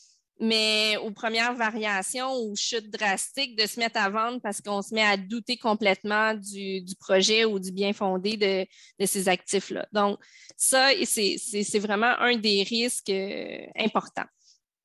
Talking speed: 155 wpm